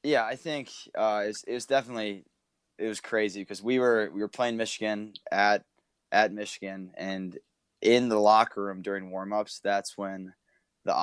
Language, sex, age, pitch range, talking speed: English, male, 20-39, 95-105 Hz, 175 wpm